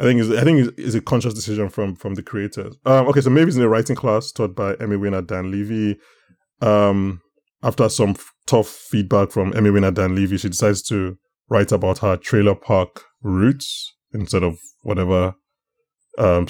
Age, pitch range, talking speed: 20-39, 95-120 Hz, 190 wpm